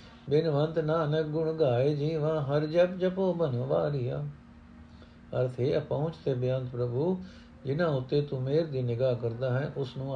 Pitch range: 125-155 Hz